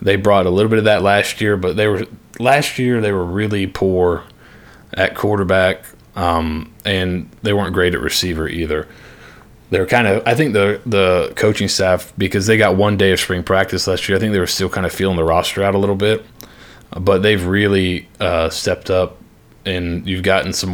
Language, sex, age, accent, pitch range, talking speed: English, male, 20-39, American, 90-100 Hz, 205 wpm